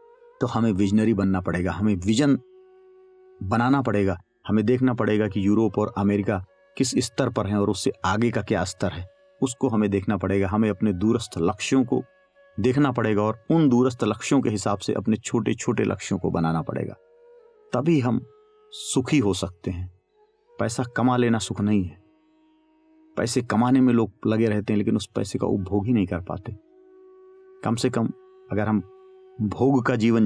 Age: 40-59